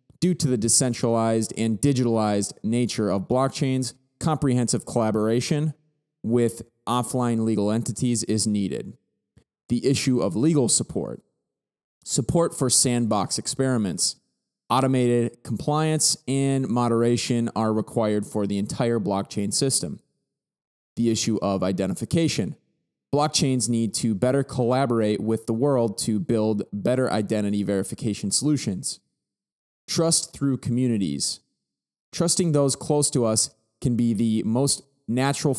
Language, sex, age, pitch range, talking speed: English, male, 20-39, 110-135 Hz, 115 wpm